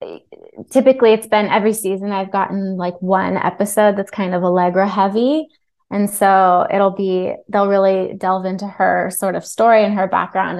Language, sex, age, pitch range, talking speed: English, female, 20-39, 190-215 Hz, 170 wpm